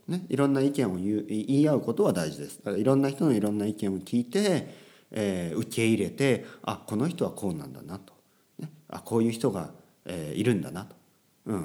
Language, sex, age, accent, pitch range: Japanese, male, 40-59, native, 100-140 Hz